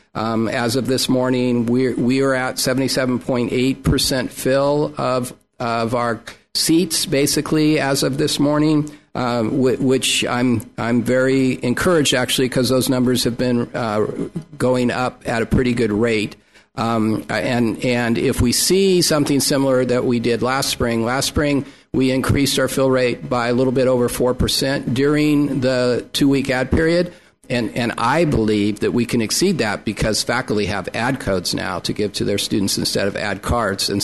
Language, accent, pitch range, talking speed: English, American, 120-140 Hz, 170 wpm